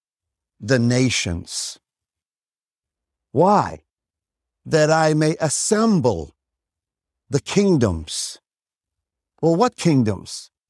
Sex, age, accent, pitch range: male, 50-69, American, 110-170 Hz